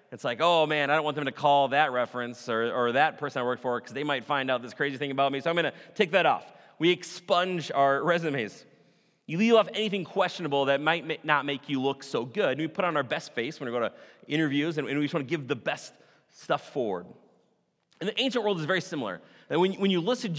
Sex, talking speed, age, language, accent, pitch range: male, 250 wpm, 30-49, English, American, 145-190 Hz